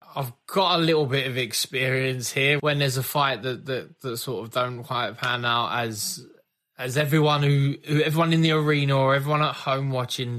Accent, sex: British, male